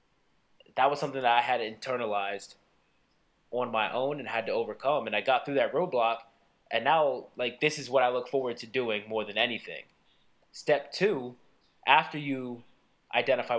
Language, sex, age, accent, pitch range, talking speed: English, male, 20-39, American, 110-130 Hz, 170 wpm